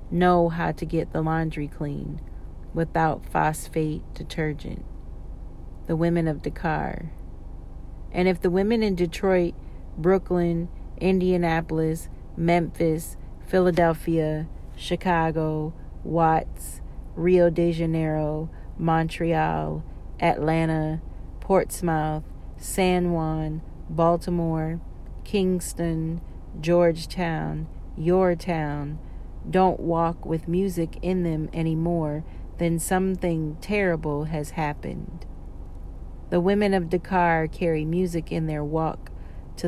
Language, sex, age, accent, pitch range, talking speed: English, female, 40-59, American, 155-175 Hz, 90 wpm